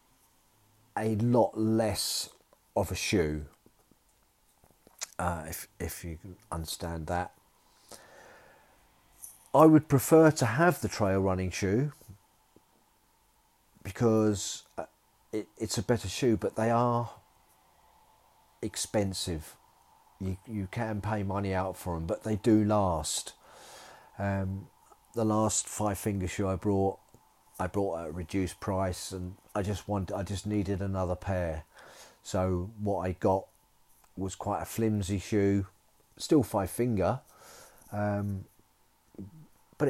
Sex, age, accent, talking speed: male, 40-59, British, 120 wpm